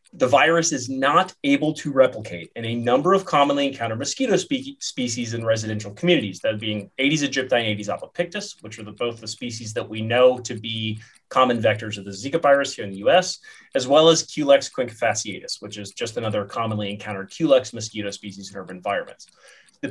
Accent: American